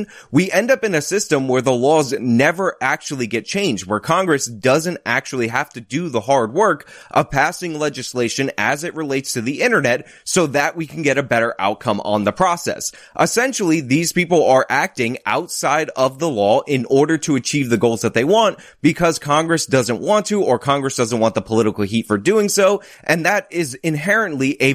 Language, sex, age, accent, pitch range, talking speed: English, male, 20-39, American, 125-175 Hz, 195 wpm